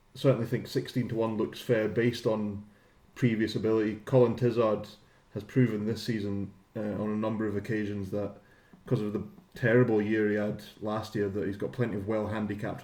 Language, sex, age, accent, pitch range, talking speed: English, male, 20-39, British, 105-130 Hz, 180 wpm